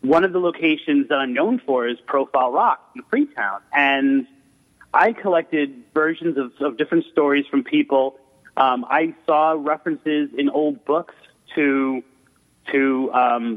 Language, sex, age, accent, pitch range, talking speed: English, male, 30-49, American, 130-155 Hz, 145 wpm